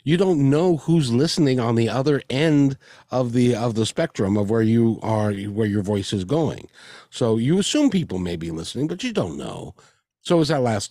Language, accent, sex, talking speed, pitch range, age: English, American, male, 215 wpm, 95-130 Hz, 50-69